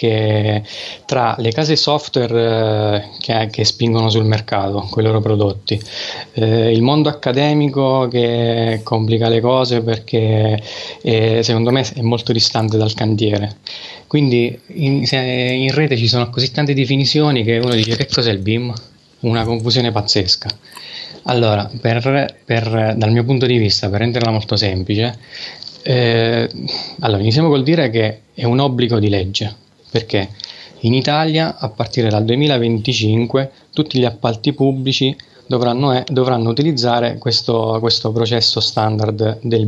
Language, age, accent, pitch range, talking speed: Italian, 20-39, native, 110-130 Hz, 140 wpm